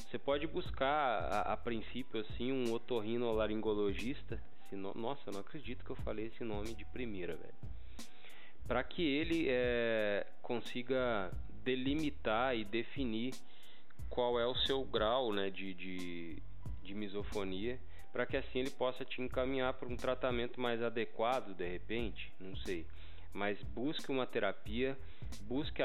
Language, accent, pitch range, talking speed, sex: Portuguese, Brazilian, 105-125 Hz, 140 wpm, male